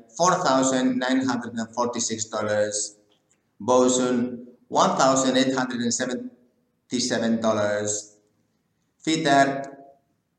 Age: 50-69